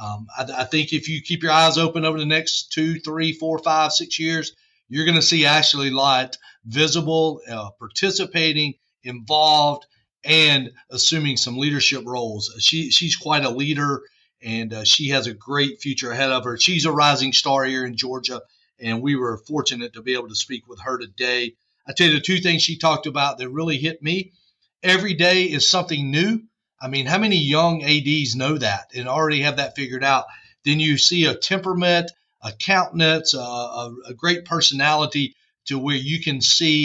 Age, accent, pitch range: 40-59, American, 130-160 Hz